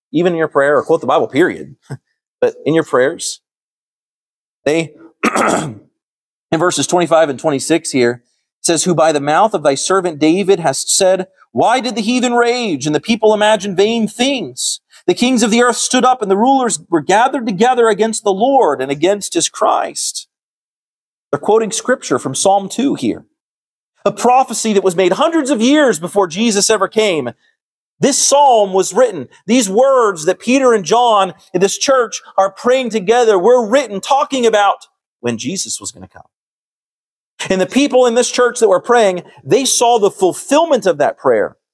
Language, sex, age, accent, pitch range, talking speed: English, male, 40-59, American, 170-250 Hz, 180 wpm